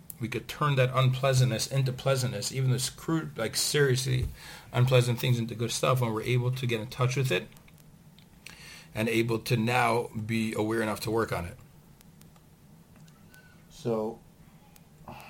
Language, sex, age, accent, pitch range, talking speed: English, male, 40-59, American, 110-130 Hz, 150 wpm